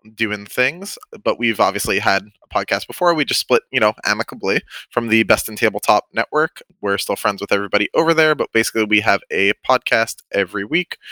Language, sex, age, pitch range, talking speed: English, male, 20-39, 100-115 Hz, 195 wpm